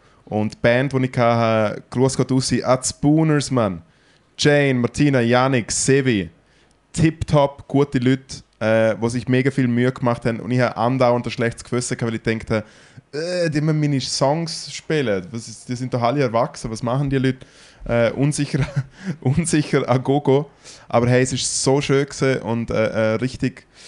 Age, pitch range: 20-39, 120-140 Hz